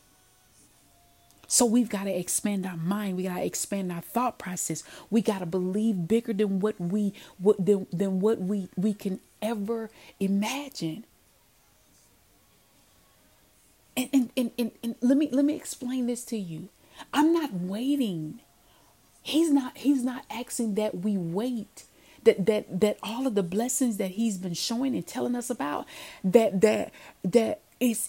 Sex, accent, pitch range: female, American, 195-255 Hz